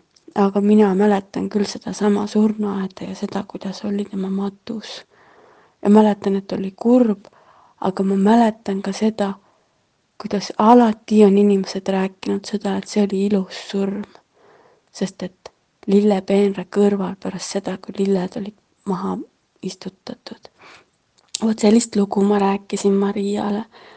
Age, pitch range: 20-39, 200-220 Hz